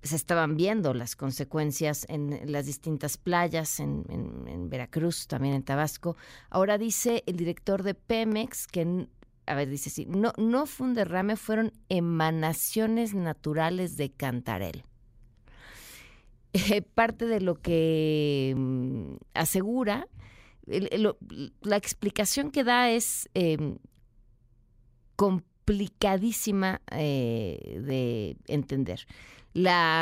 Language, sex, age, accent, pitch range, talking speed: Spanish, female, 40-59, Mexican, 145-205 Hz, 115 wpm